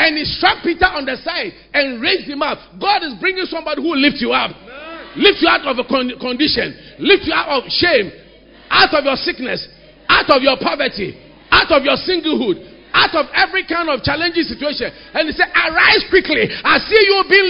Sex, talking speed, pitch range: male, 200 wpm, 310-395 Hz